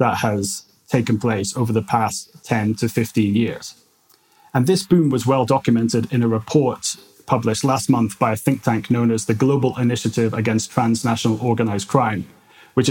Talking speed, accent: 170 wpm, British